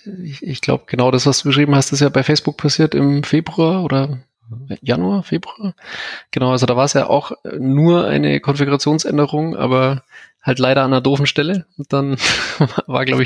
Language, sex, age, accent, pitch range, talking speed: German, male, 20-39, German, 120-140 Hz, 180 wpm